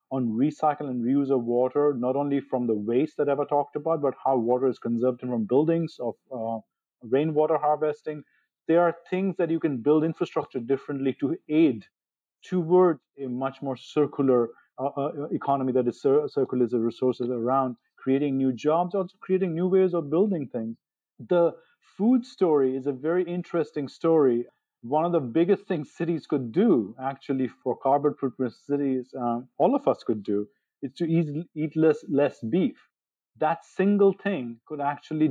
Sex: male